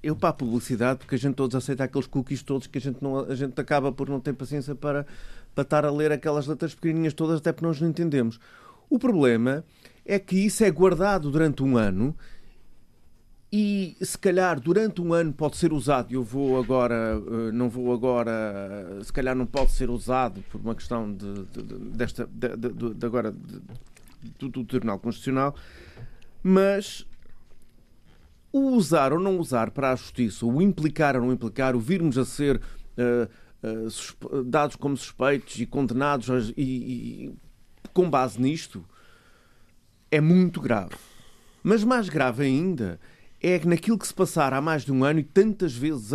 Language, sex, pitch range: Portuguese, male, 125-165 Hz